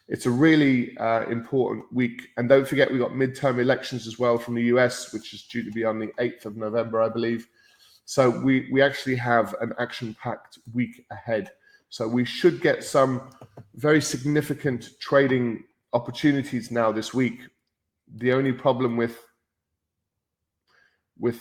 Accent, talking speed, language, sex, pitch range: British, 160 wpm, English, male, 110-130 Hz